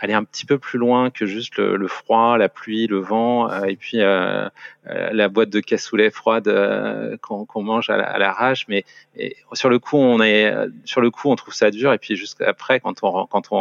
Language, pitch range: French, 100-120 Hz